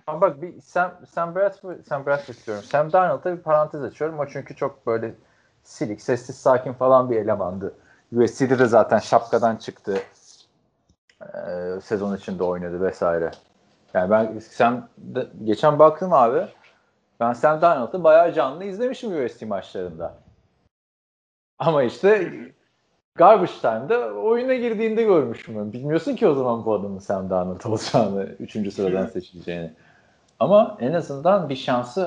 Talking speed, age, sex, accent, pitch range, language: 135 wpm, 40-59, male, native, 100-155 Hz, Turkish